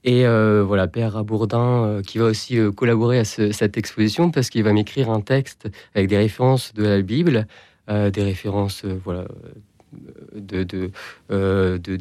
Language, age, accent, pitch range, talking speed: French, 30-49, French, 105-120 Hz, 175 wpm